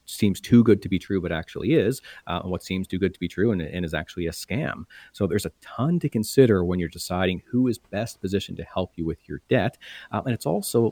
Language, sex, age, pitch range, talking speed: English, male, 40-59, 90-115 Hz, 255 wpm